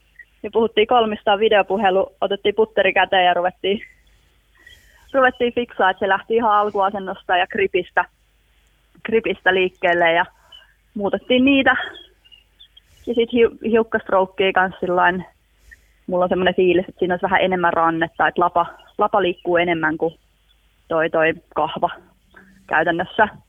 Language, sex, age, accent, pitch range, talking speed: Finnish, female, 30-49, native, 170-215 Hz, 120 wpm